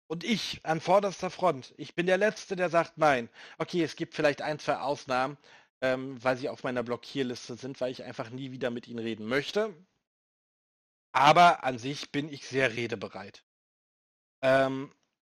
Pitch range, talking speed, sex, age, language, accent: 125-155 Hz, 170 wpm, male, 40-59, German, German